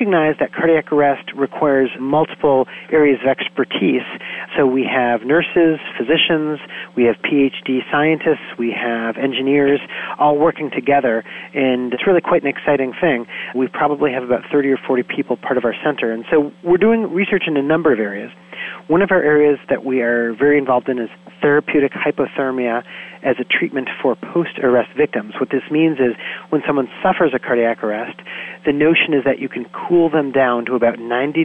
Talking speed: 175 wpm